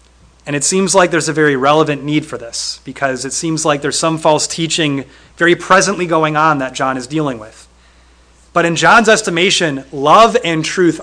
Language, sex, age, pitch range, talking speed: English, male, 30-49, 135-205 Hz, 190 wpm